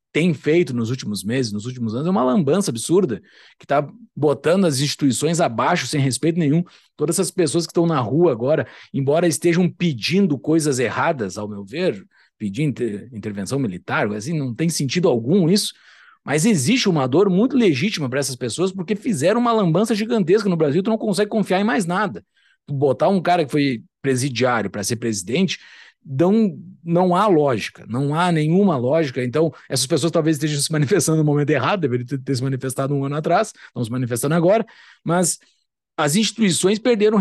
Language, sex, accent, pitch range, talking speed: Portuguese, male, Brazilian, 140-205 Hz, 180 wpm